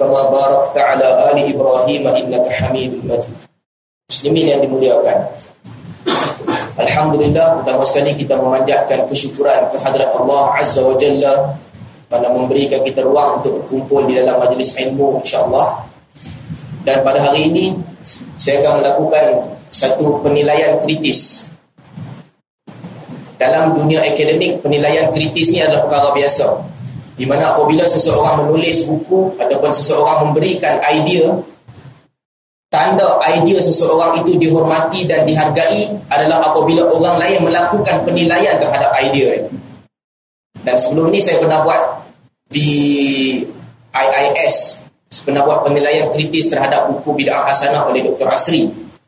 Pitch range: 135-165 Hz